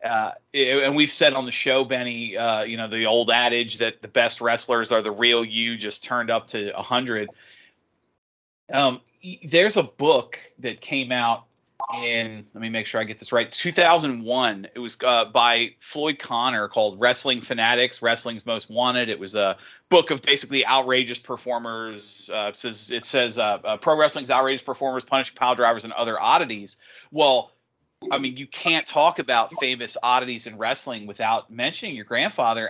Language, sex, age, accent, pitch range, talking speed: English, male, 30-49, American, 115-135 Hz, 180 wpm